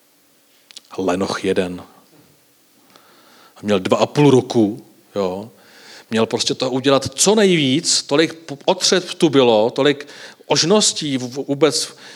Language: Czech